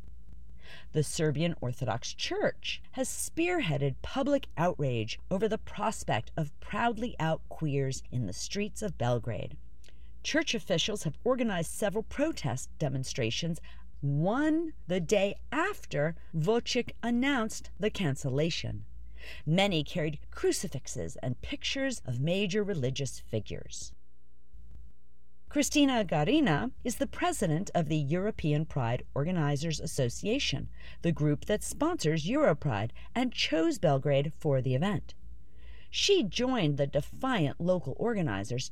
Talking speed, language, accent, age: 110 wpm, English, American, 40-59